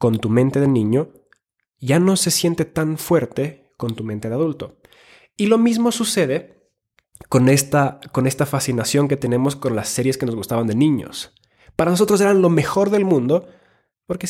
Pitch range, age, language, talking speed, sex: 125-170 Hz, 20-39, Spanish, 175 wpm, male